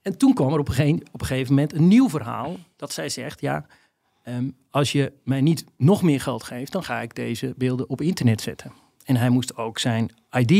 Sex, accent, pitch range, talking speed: male, Dutch, 125-165 Hz, 210 wpm